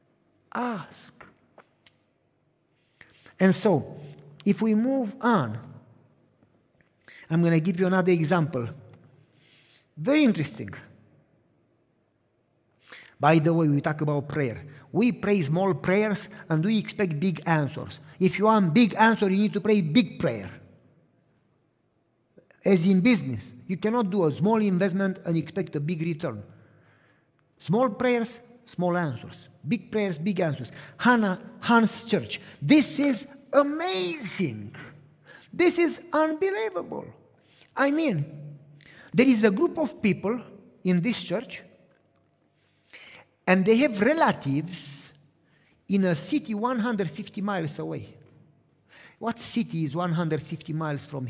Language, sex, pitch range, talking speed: Hungarian, male, 145-215 Hz, 120 wpm